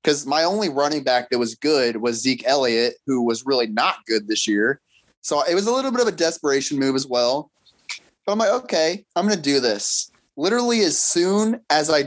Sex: male